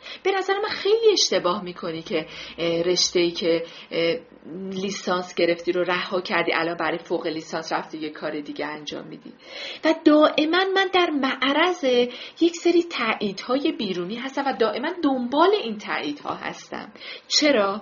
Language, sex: Persian, female